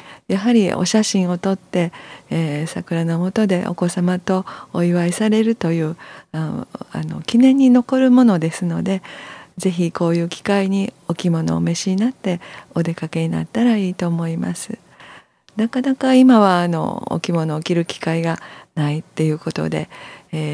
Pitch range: 165-220 Hz